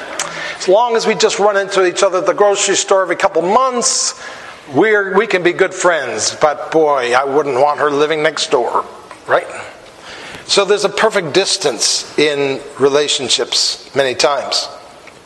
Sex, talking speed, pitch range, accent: male, 155 wpm, 165-220 Hz, American